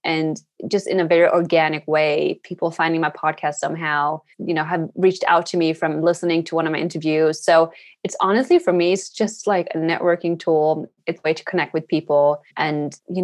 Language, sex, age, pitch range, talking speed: English, female, 20-39, 170-200 Hz, 210 wpm